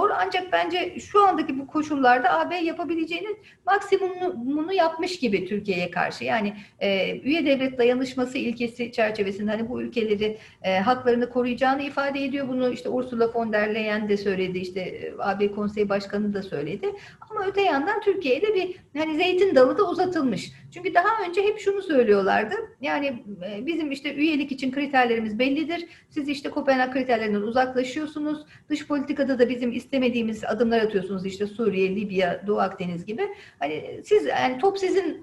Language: Turkish